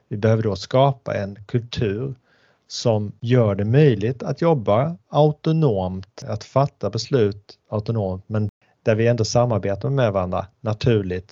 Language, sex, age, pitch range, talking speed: Swedish, male, 30-49, 100-125 Hz, 135 wpm